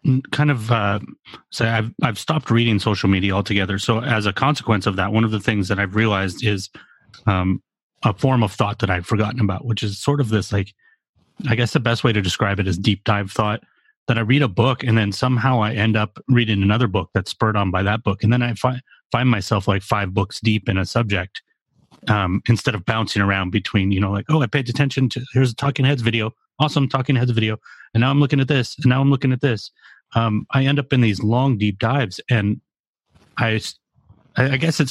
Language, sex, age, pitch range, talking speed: English, male, 30-49, 100-125 Hz, 230 wpm